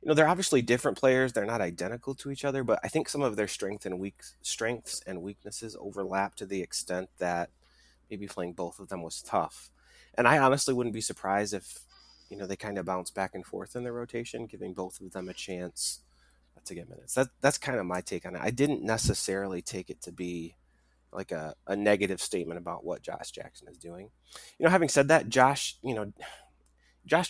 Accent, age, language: American, 30-49, English